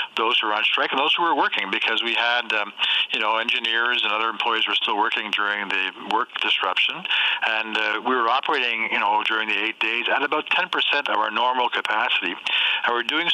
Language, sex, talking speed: English, male, 215 wpm